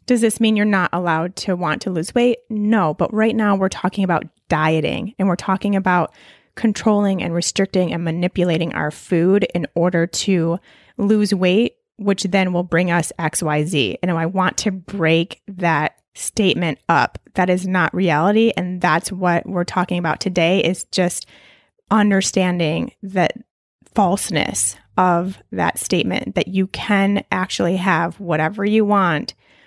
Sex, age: female, 20-39